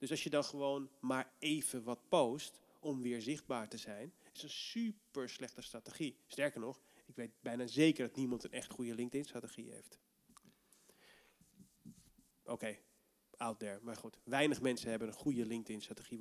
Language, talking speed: Dutch, 165 wpm